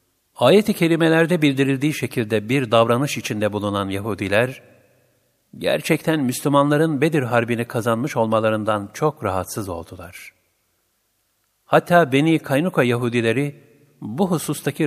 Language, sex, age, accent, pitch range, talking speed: Turkish, male, 50-69, native, 105-145 Hz, 95 wpm